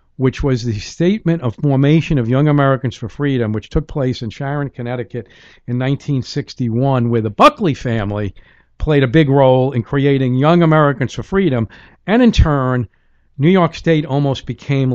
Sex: male